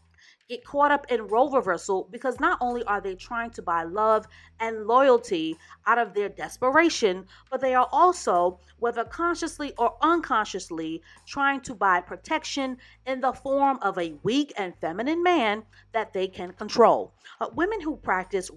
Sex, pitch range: female, 200-295 Hz